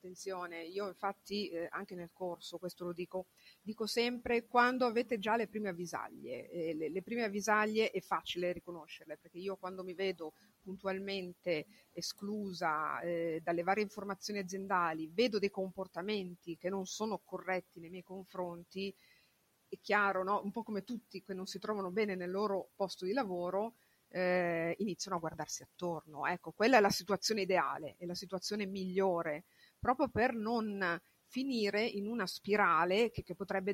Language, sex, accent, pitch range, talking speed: Italian, female, native, 175-205 Hz, 160 wpm